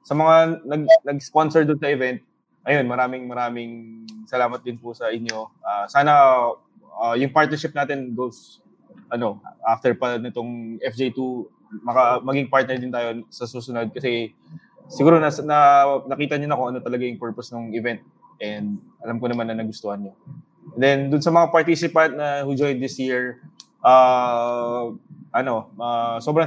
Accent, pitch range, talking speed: Filipino, 125-160 Hz, 155 wpm